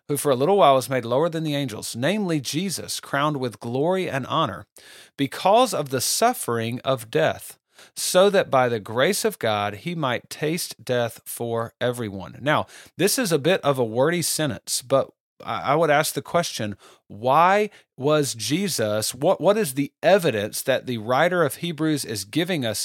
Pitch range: 120-155 Hz